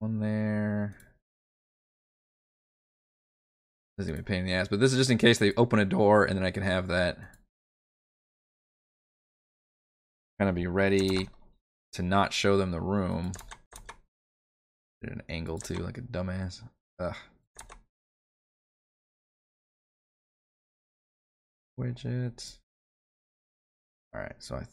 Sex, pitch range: male, 85-110 Hz